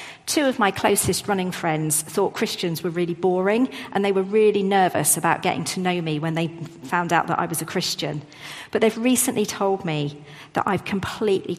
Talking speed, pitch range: 195 wpm, 155-200 Hz